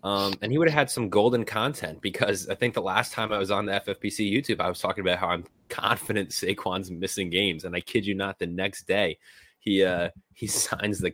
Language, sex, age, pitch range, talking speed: English, male, 20-39, 90-110 Hz, 235 wpm